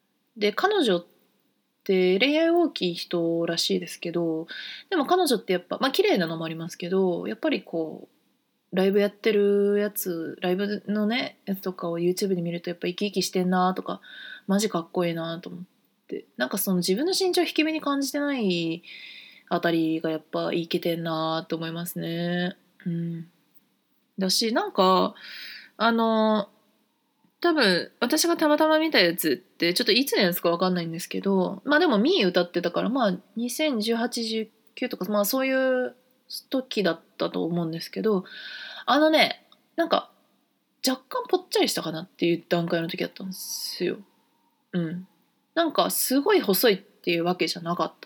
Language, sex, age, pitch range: Japanese, female, 20-39, 175-265 Hz